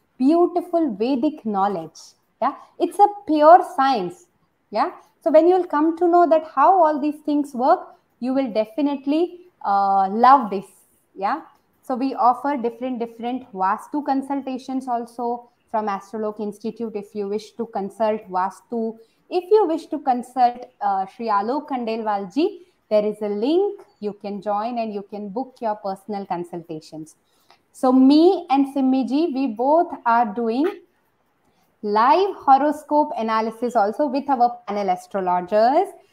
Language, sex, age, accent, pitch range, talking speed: Hindi, female, 20-39, native, 210-295 Hz, 145 wpm